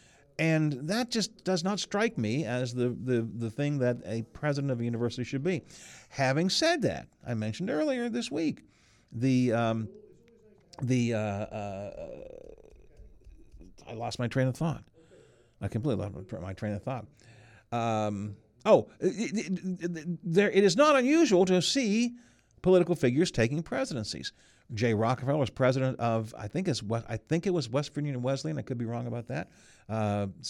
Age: 50-69